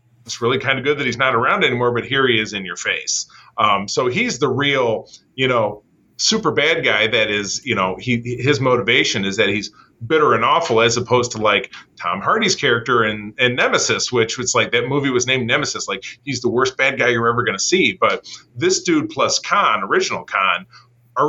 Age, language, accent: 30-49, English, American